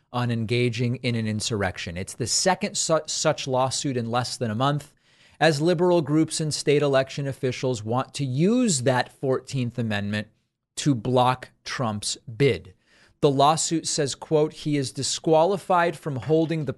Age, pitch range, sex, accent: 30-49, 115-150 Hz, male, American